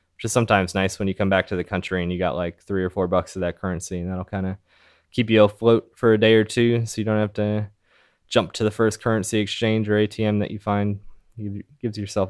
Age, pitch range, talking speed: 20-39, 95-115 Hz, 255 wpm